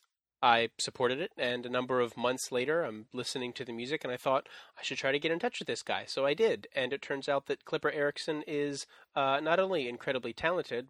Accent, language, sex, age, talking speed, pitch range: American, English, male, 30-49, 235 wpm, 120-140 Hz